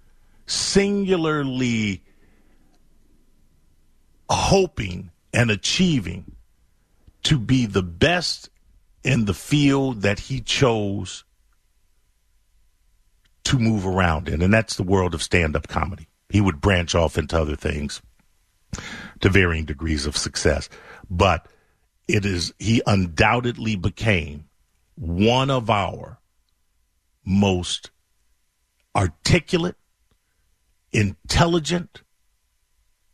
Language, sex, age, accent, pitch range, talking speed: English, male, 50-69, American, 80-120 Hz, 90 wpm